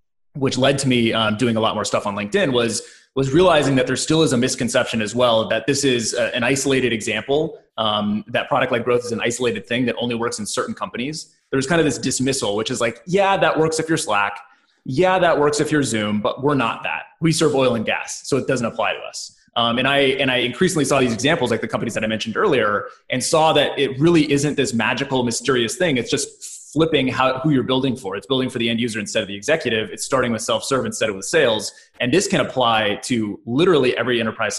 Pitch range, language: 115-140 Hz, English